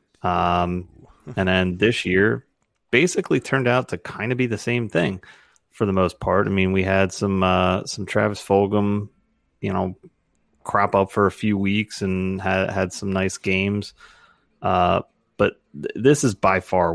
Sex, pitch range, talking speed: male, 90-110 Hz, 175 wpm